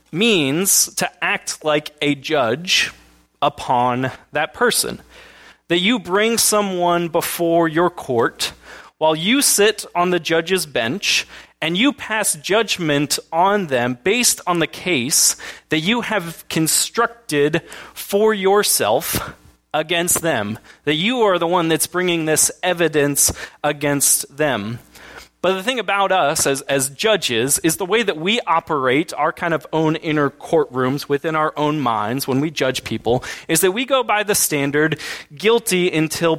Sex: male